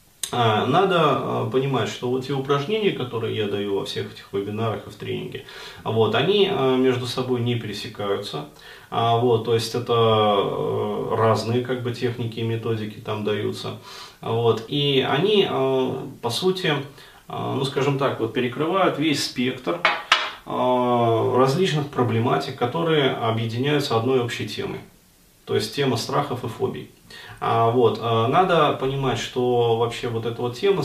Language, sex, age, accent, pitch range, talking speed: Russian, male, 20-39, native, 115-135 Hz, 130 wpm